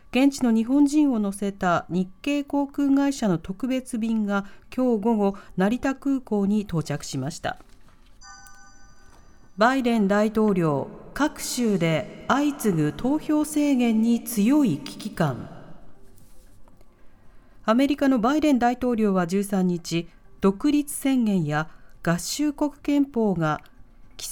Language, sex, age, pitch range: Japanese, female, 40-59, 175-265 Hz